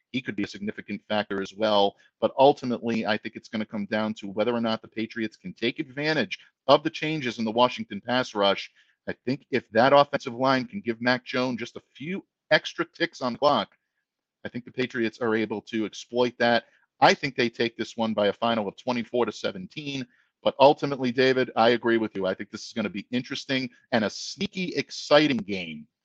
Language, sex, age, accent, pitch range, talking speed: English, male, 50-69, American, 110-135 Hz, 215 wpm